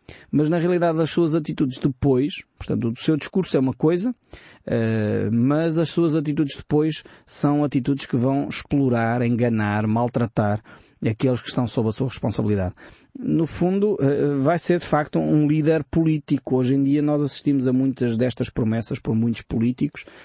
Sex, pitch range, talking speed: male, 125-150 Hz, 165 wpm